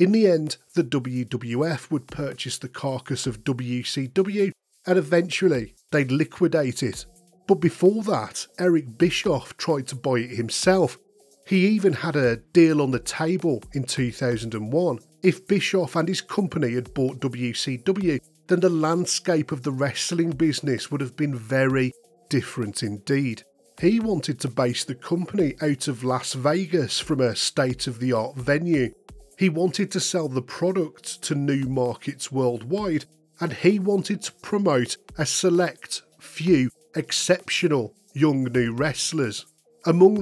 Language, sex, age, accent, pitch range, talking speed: English, male, 40-59, British, 130-175 Hz, 140 wpm